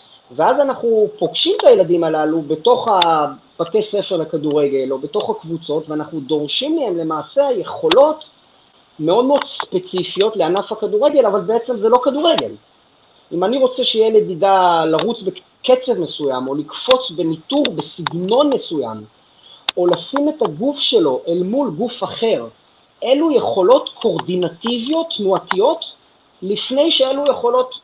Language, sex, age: Hebrew, male, 30-49